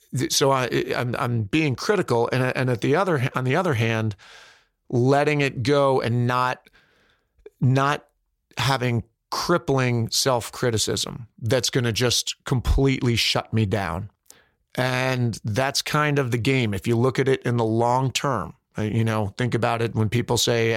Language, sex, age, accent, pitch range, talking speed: English, male, 40-59, American, 115-135 Hz, 160 wpm